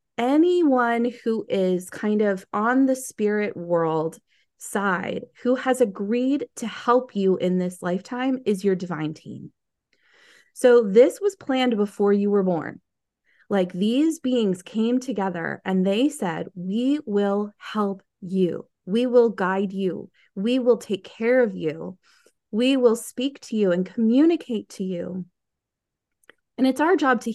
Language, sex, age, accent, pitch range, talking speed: English, female, 20-39, American, 200-260 Hz, 145 wpm